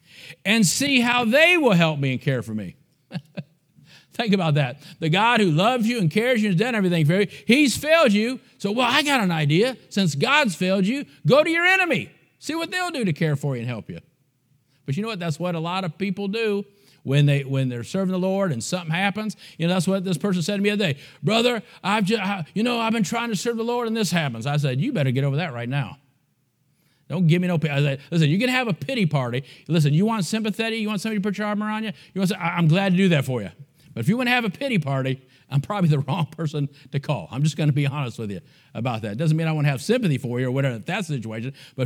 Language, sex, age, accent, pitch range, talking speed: English, male, 50-69, American, 140-200 Hz, 275 wpm